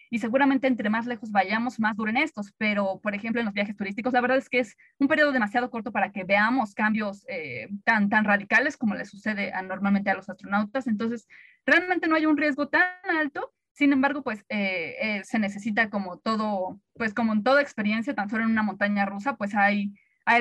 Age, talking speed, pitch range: 20-39, 210 wpm, 205-255 Hz